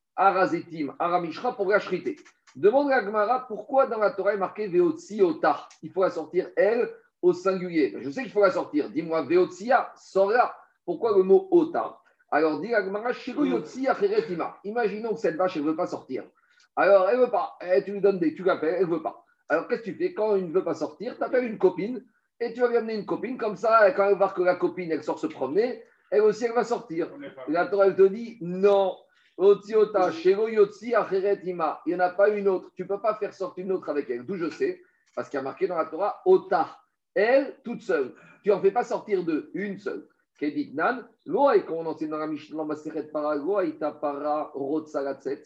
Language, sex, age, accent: French, male, 50-69, French